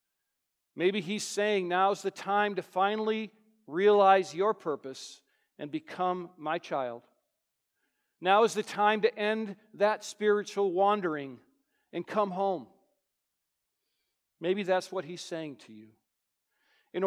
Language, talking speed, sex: English, 125 wpm, male